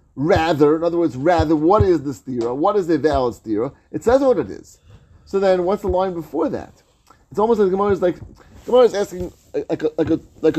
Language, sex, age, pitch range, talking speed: English, male, 30-49, 125-190 Hz, 210 wpm